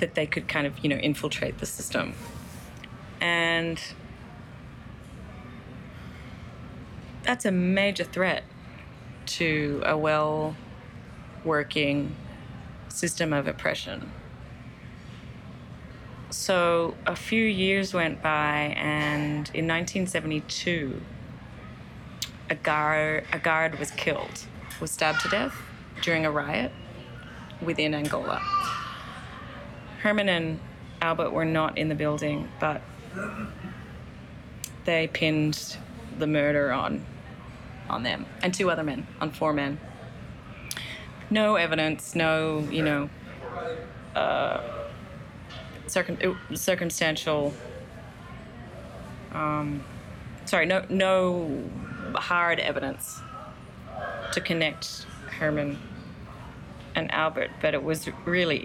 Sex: female